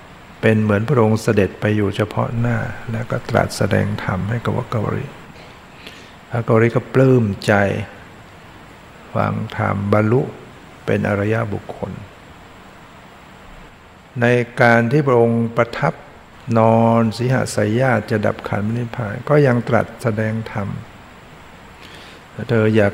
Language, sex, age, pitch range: Thai, male, 60-79, 105-120 Hz